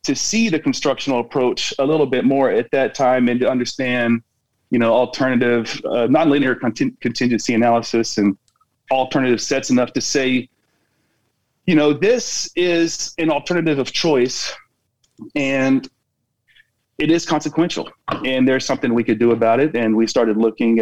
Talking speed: 150 wpm